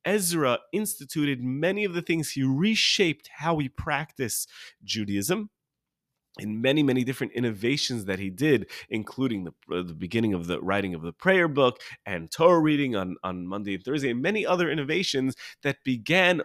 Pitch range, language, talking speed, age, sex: 105-150 Hz, English, 170 wpm, 30-49, male